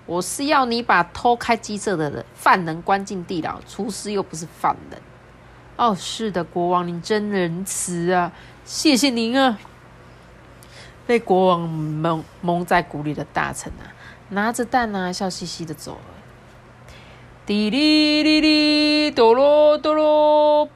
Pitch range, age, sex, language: 175-245 Hz, 30-49, female, Chinese